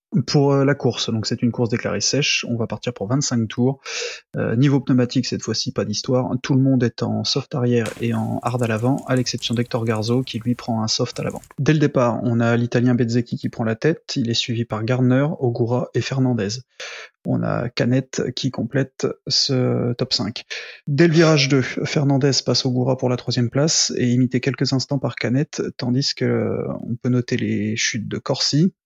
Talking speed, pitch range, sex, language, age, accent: 205 wpm, 120-135 Hz, male, French, 20-39, French